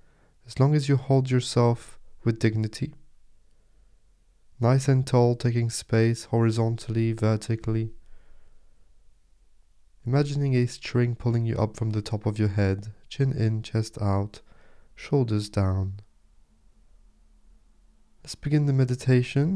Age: 20-39